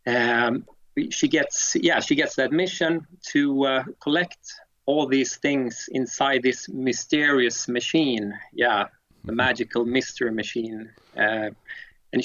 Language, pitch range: English, 120-165 Hz